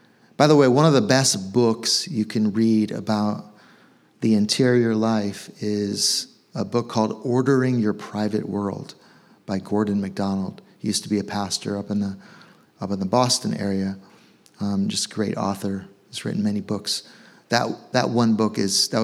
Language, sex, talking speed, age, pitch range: English, male, 175 wpm, 30-49, 105-130 Hz